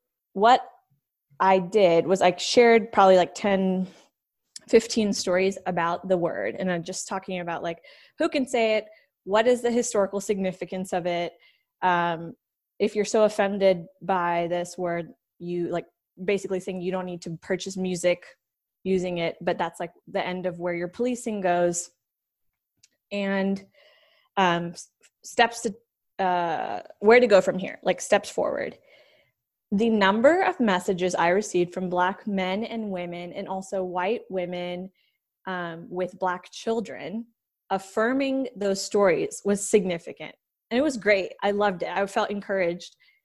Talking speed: 150 wpm